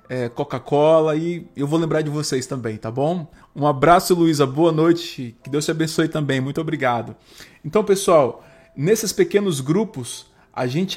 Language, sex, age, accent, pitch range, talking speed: Portuguese, male, 20-39, Brazilian, 135-170 Hz, 160 wpm